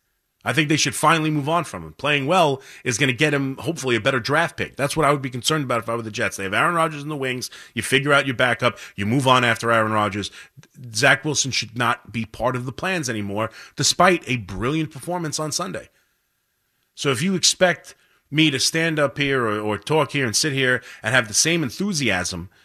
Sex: male